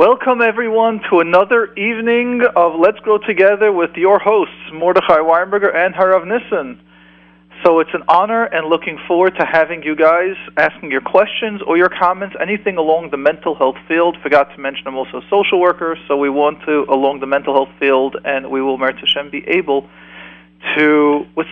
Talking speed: 185 wpm